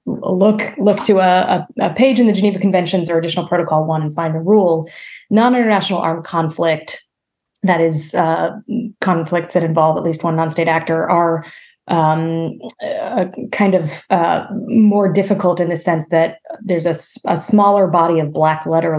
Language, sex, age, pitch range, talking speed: English, female, 20-39, 160-195 Hz, 165 wpm